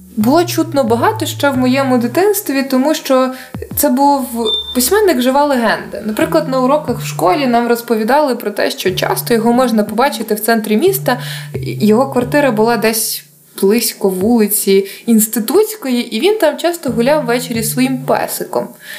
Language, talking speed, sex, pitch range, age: Ukrainian, 145 wpm, female, 215-280 Hz, 20-39